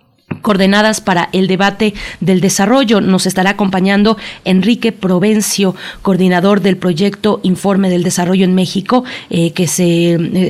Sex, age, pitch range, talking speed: female, 30-49, 180-205 Hz, 130 wpm